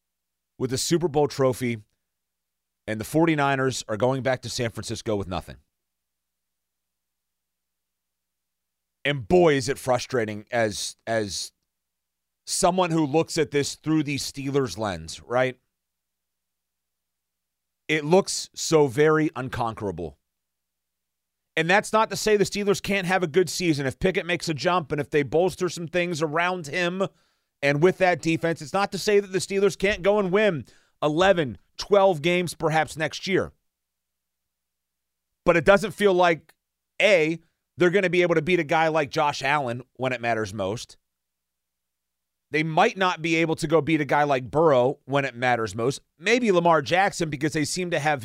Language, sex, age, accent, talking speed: English, male, 30-49, American, 160 wpm